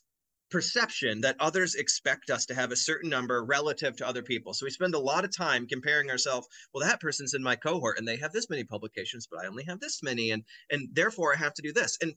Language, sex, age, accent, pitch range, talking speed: English, male, 30-49, American, 115-165 Hz, 245 wpm